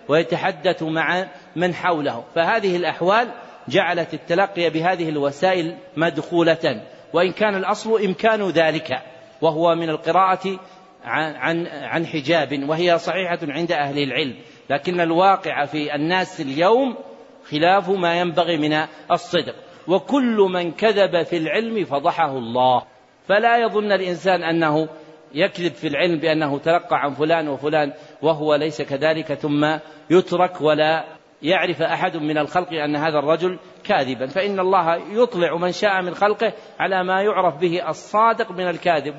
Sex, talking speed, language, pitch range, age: male, 125 wpm, Arabic, 145-180 Hz, 50-69